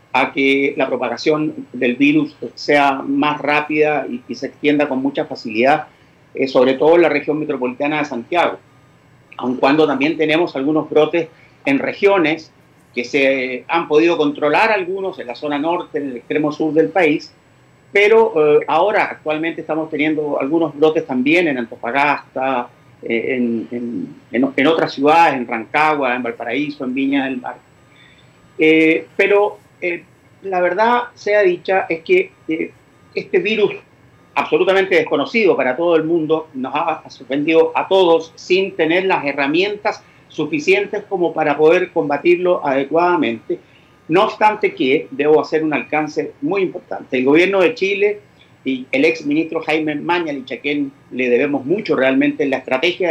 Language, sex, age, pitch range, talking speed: Spanish, male, 40-59, 135-175 Hz, 155 wpm